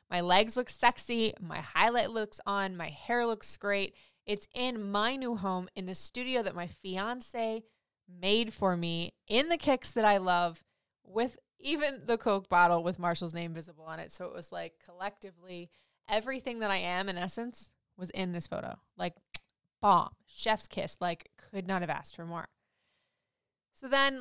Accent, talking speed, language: American, 175 wpm, English